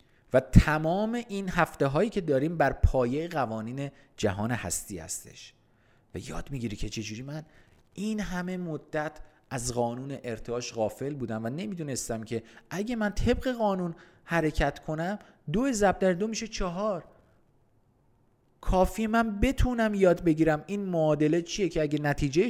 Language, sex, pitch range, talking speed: Persian, male, 115-175 Hz, 140 wpm